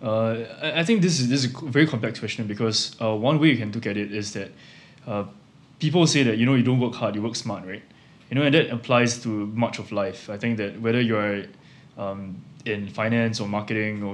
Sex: male